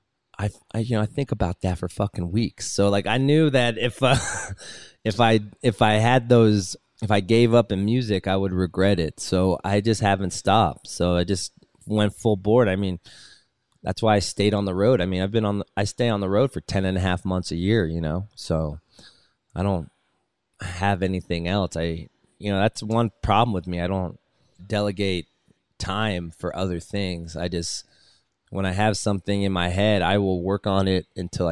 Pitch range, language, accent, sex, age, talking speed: 90-110 Hz, English, American, male, 20-39, 210 wpm